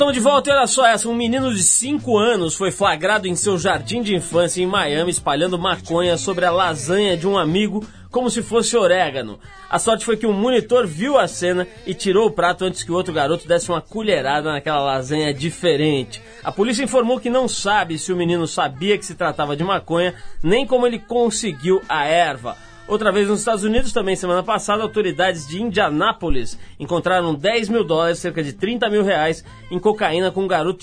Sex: male